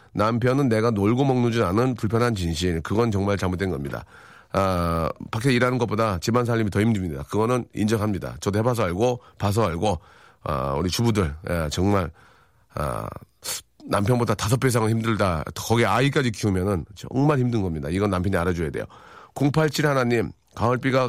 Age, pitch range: 40-59, 100-135 Hz